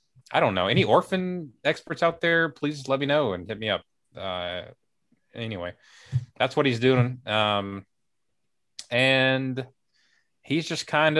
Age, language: 20-39, English